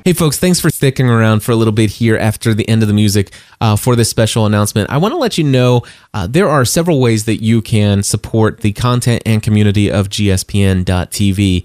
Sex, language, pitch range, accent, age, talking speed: male, English, 100-120 Hz, American, 20-39, 220 wpm